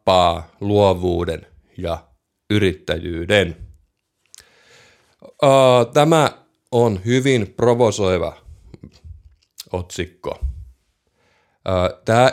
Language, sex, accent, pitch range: Finnish, male, native, 90-115 Hz